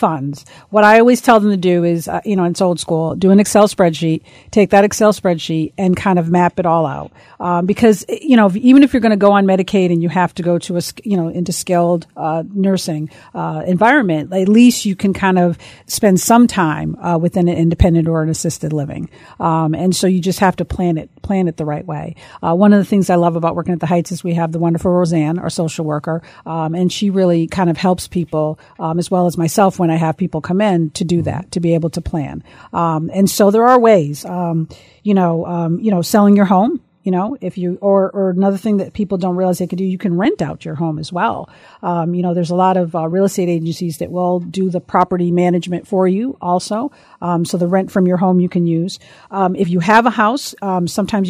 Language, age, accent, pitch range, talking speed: English, 50-69, American, 170-195 Hz, 250 wpm